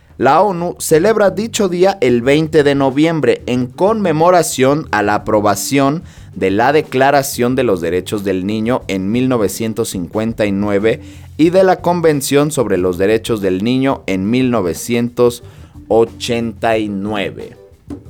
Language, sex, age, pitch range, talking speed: Spanish, male, 30-49, 100-135 Hz, 115 wpm